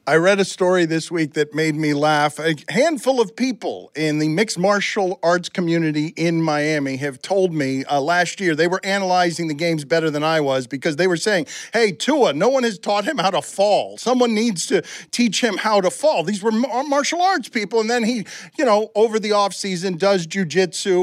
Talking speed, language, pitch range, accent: 210 wpm, English, 165-220 Hz, American